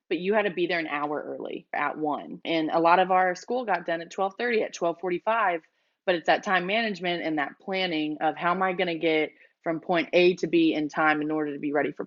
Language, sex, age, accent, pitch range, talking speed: English, female, 20-39, American, 160-190 Hz, 250 wpm